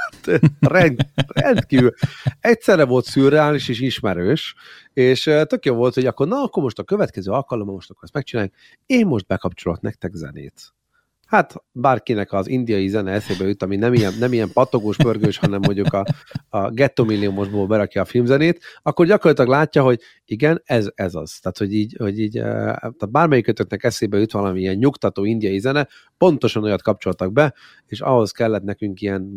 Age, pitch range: 30-49, 100-135 Hz